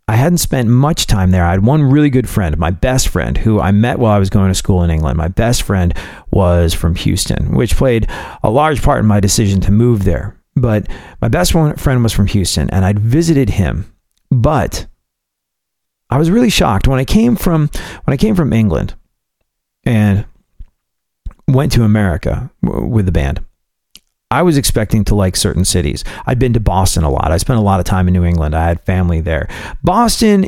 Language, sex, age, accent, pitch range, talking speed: English, male, 40-59, American, 90-130 Hz, 200 wpm